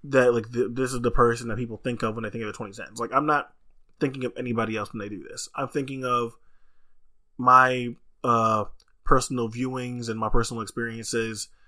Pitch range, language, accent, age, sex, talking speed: 115-130 Hz, English, American, 20-39, male, 200 wpm